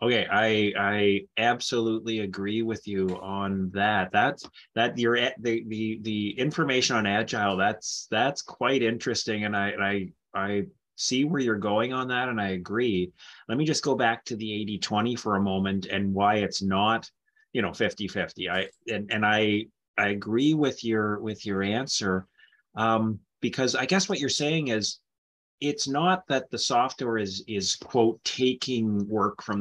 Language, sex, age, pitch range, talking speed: English, male, 30-49, 100-120 Hz, 170 wpm